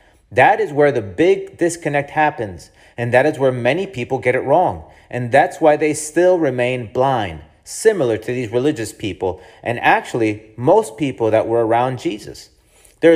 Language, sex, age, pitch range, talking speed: English, male, 40-59, 120-170 Hz, 170 wpm